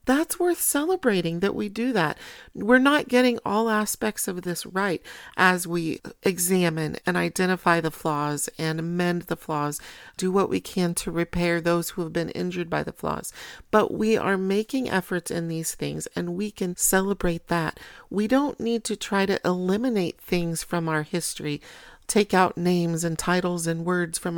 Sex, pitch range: female, 170-215 Hz